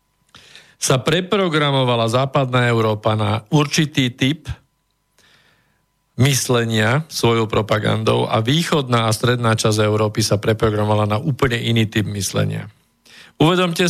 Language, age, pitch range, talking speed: Slovak, 50-69, 110-140 Hz, 105 wpm